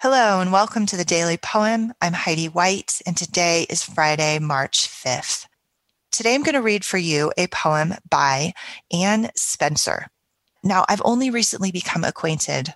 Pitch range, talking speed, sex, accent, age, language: 145-180 Hz, 155 wpm, female, American, 30-49, English